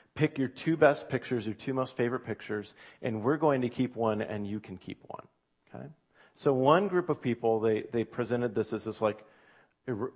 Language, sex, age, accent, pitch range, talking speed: English, male, 40-59, American, 95-135 Hz, 205 wpm